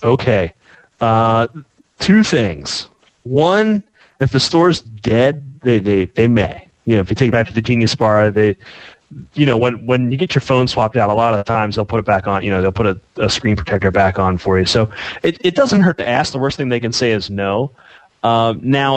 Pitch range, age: 110-135 Hz, 30-49